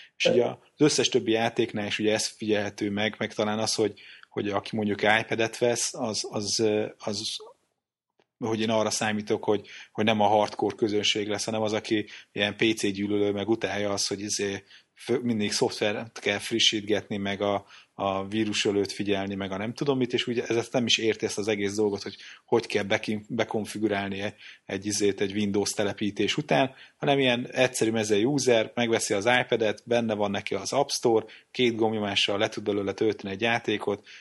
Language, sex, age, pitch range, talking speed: Hungarian, male, 30-49, 100-115 Hz, 180 wpm